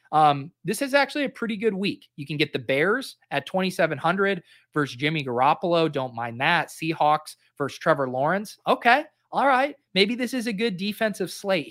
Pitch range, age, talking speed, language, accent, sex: 145-185 Hz, 30-49, 180 wpm, English, American, male